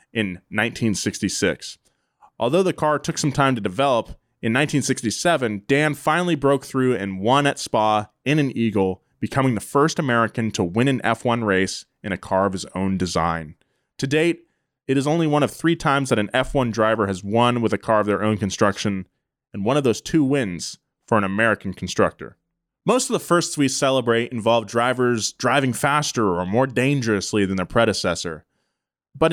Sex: male